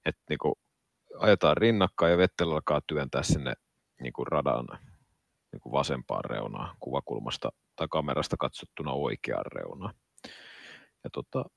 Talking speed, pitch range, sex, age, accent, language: 115 wpm, 85-120 Hz, male, 30-49, native, Finnish